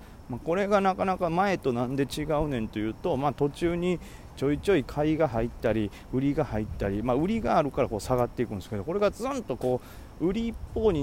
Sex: male